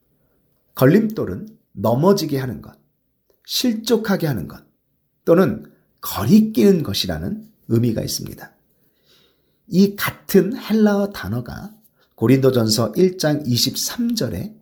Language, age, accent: Korean, 40-59, native